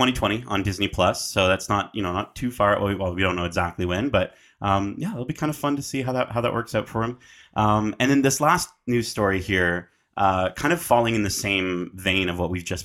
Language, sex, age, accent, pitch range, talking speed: English, male, 30-49, American, 95-120 Hz, 265 wpm